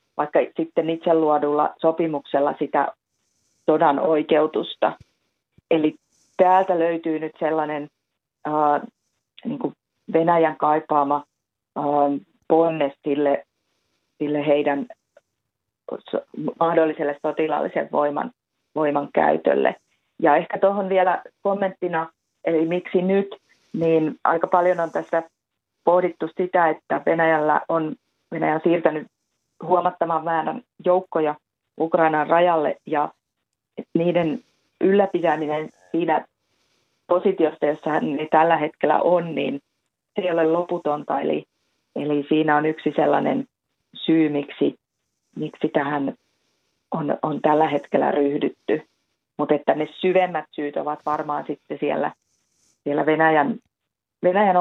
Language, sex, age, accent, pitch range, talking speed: Finnish, female, 30-49, native, 150-170 Hz, 105 wpm